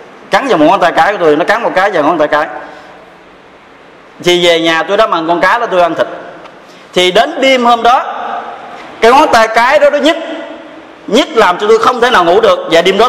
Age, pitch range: 20-39, 170-245 Hz